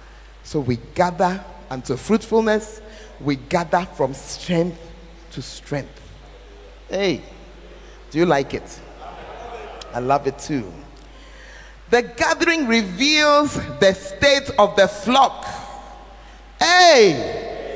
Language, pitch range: English, 125-200 Hz